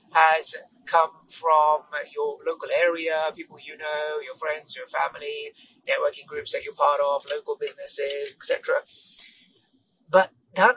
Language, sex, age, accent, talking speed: English, male, 30-49, British, 135 wpm